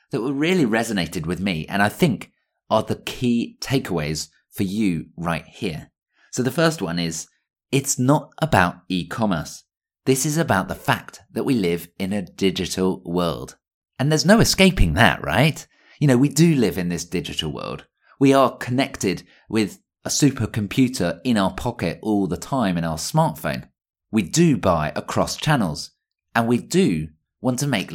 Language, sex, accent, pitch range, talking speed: English, male, British, 95-140 Hz, 165 wpm